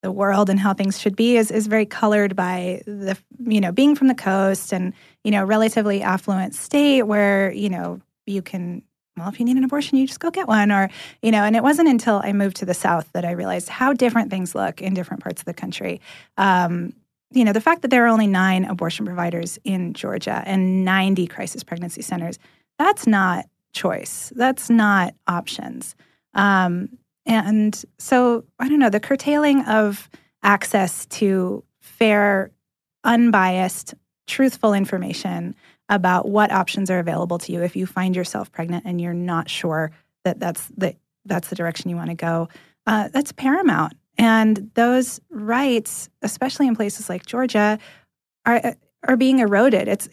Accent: American